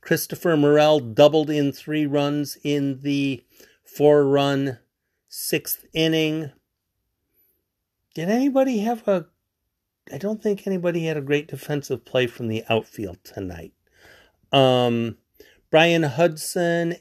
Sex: male